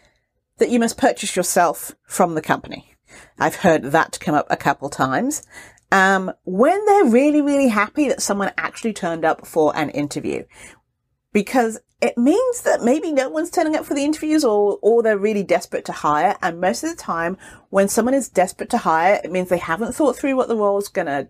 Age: 40-59